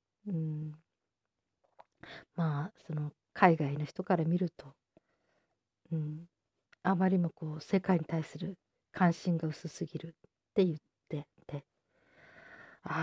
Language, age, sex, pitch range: Japanese, 40-59, female, 155-180 Hz